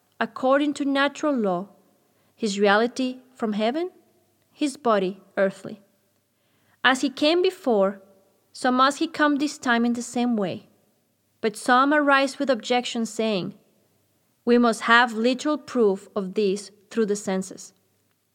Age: 20-39